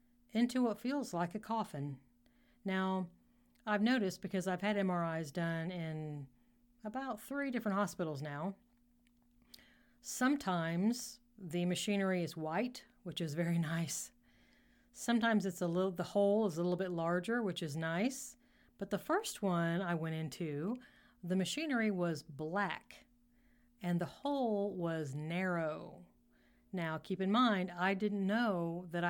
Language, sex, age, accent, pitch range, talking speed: English, female, 40-59, American, 170-235 Hz, 140 wpm